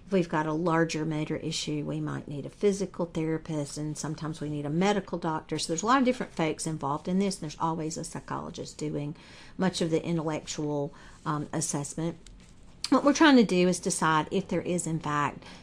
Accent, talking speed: American, 205 wpm